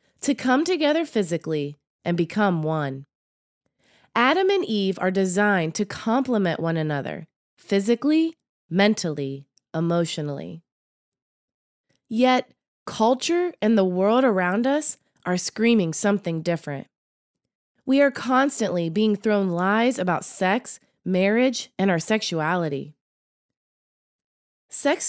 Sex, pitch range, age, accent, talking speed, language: female, 165-235 Hz, 20-39, American, 105 wpm, English